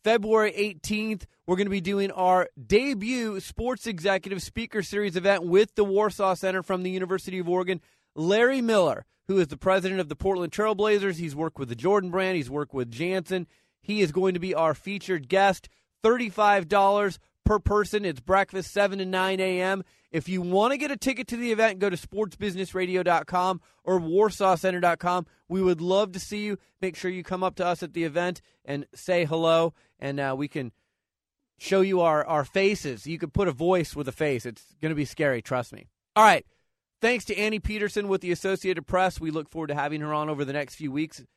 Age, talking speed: 30-49, 205 wpm